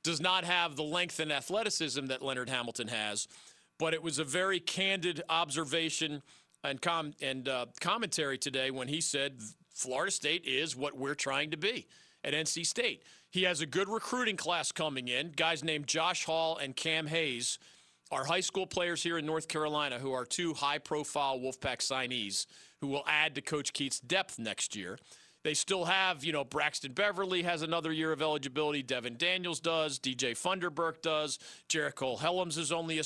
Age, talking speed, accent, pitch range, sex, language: 40-59, 180 wpm, American, 140-170 Hz, male, English